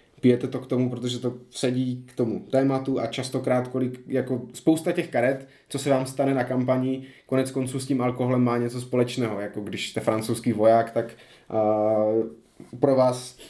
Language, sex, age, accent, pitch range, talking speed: Czech, male, 20-39, native, 115-135 Hz, 175 wpm